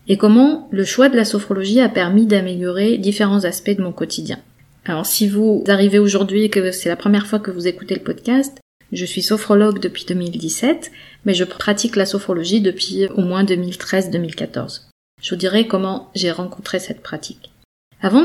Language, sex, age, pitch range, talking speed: French, female, 30-49, 190-235 Hz, 180 wpm